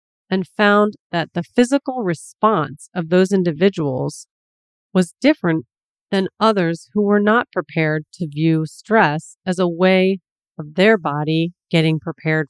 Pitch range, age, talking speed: 155-190 Hz, 40-59, 135 wpm